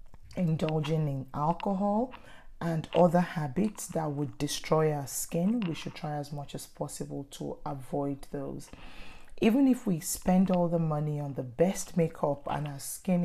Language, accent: English, Nigerian